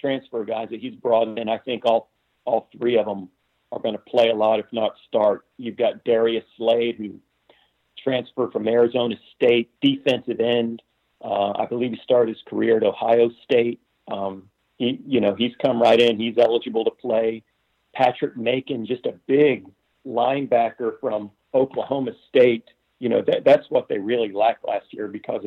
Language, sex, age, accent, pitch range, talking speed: English, male, 50-69, American, 110-125 Hz, 175 wpm